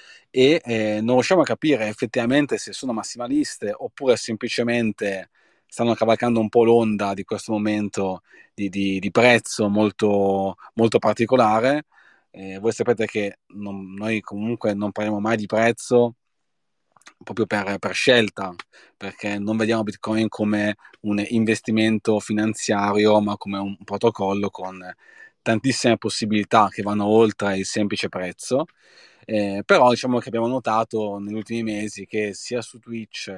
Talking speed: 135 wpm